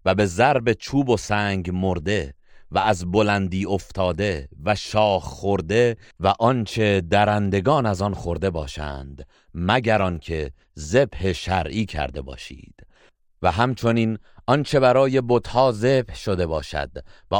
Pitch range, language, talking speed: 85-115 Hz, Persian, 125 wpm